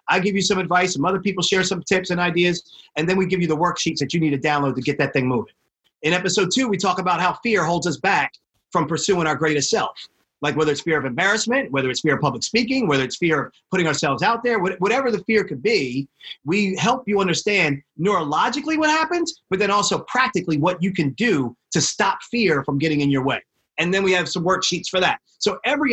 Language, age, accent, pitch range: English, 30-49, American, 150-200 Hz